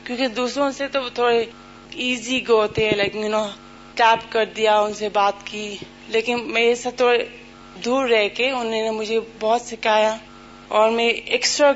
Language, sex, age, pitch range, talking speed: Urdu, female, 20-39, 215-240 Hz, 140 wpm